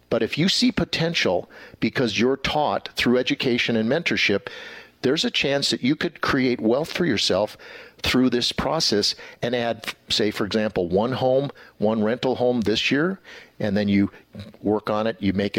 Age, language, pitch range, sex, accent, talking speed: 50-69, English, 105-135 Hz, male, American, 175 wpm